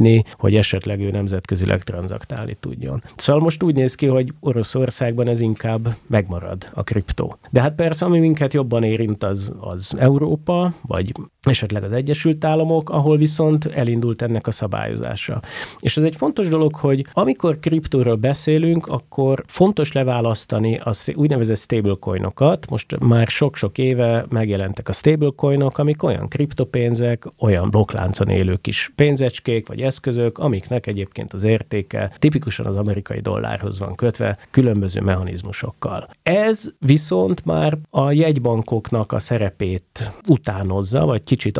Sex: male